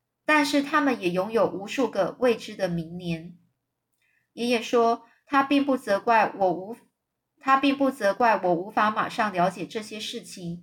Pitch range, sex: 190-250 Hz, female